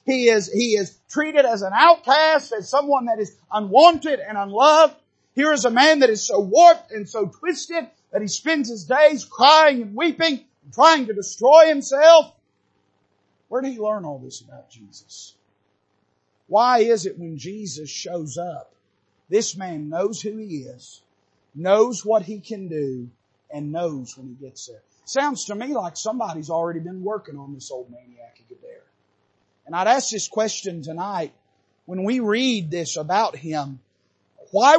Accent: American